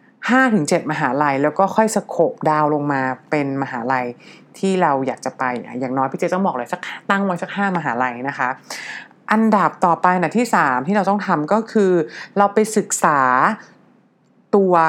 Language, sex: English, female